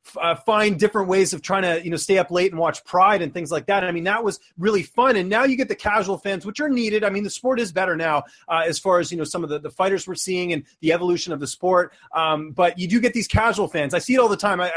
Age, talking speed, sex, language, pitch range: 30-49, 310 wpm, male, English, 170-210 Hz